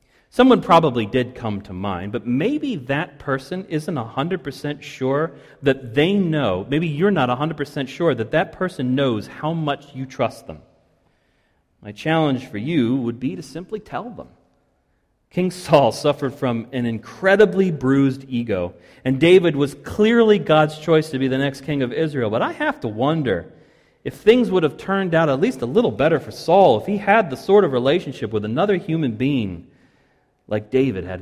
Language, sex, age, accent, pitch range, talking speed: English, male, 40-59, American, 110-150 Hz, 180 wpm